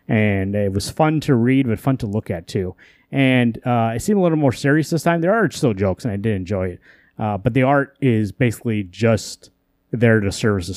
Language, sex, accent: English, male, American